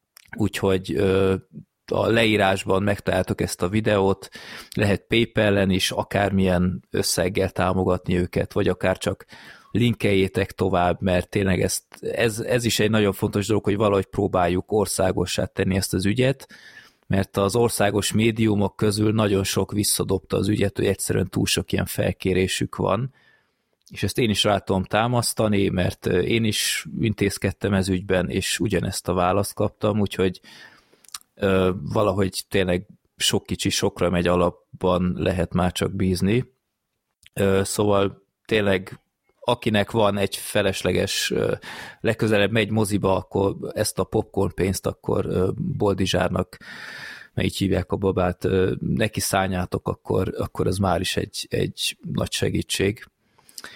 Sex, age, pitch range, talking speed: male, 20-39, 95-105 Hz, 125 wpm